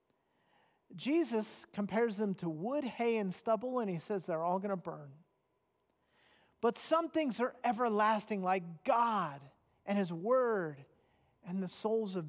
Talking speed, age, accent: 145 wpm, 40-59, American